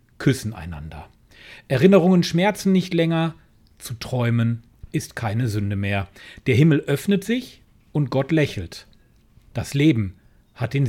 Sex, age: male, 40-59